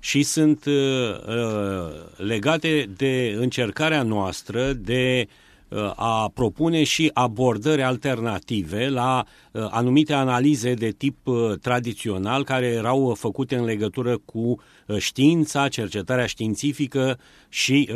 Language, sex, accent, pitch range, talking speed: Romanian, male, native, 110-135 Hz, 95 wpm